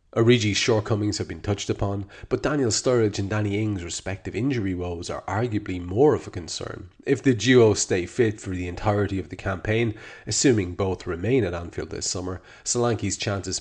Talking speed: 180 wpm